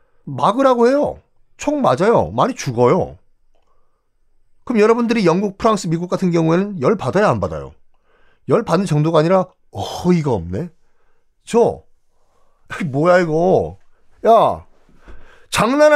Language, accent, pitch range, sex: Korean, native, 115-190 Hz, male